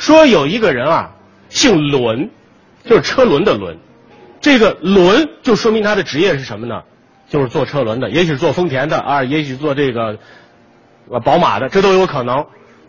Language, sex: Chinese, male